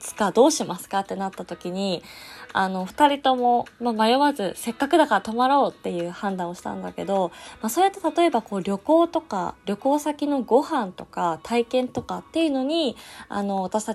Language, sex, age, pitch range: Japanese, female, 20-39, 185-275 Hz